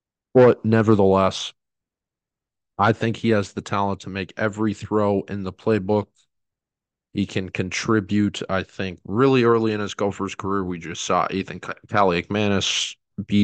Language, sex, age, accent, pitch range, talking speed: English, male, 40-59, American, 90-110 Hz, 145 wpm